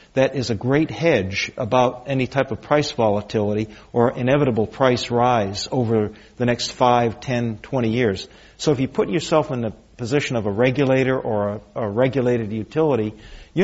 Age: 50-69